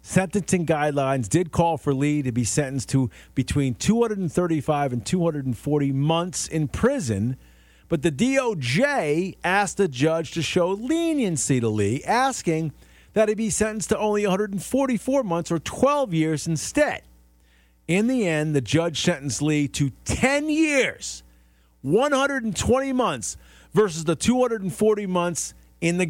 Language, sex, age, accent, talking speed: English, male, 40-59, American, 135 wpm